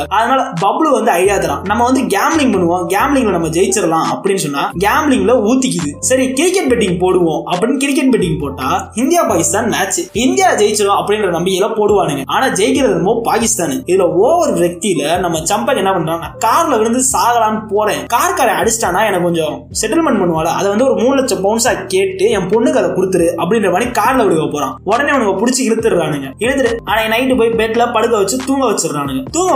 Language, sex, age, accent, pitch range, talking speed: Tamil, male, 20-39, native, 180-250 Hz, 185 wpm